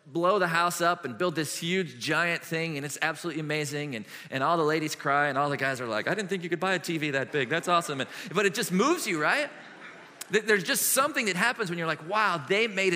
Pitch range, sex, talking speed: 155-210 Hz, male, 260 wpm